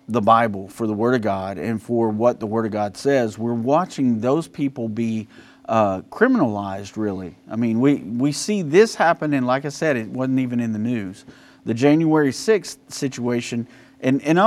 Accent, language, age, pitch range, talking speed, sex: American, English, 40-59, 110-140 Hz, 185 wpm, male